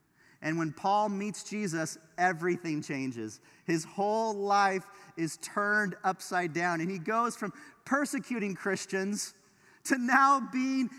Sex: male